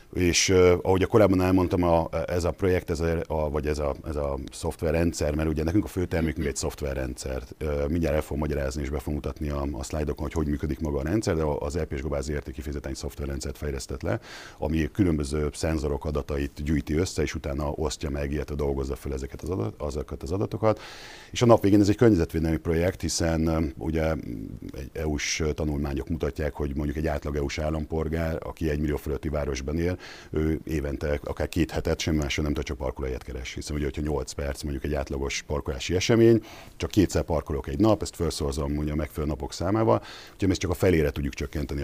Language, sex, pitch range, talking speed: Hungarian, male, 70-80 Hz, 200 wpm